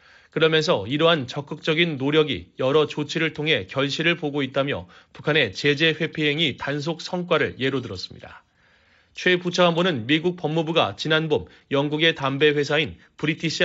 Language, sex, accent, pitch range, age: Korean, male, native, 140-165 Hz, 30-49